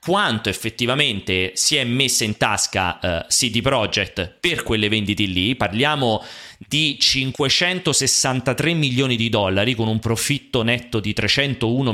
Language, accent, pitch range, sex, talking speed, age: Italian, native, 115-165 Hz, male, 130 wpm, 30-49